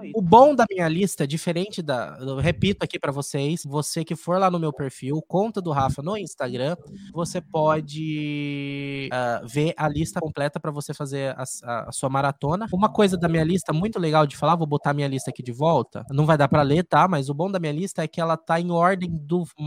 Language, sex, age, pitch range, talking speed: Portuguese, male, 20-39, 150-190 Hz, 230 wpm